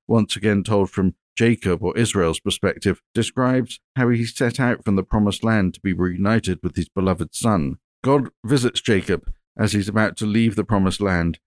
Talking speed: 185 wpm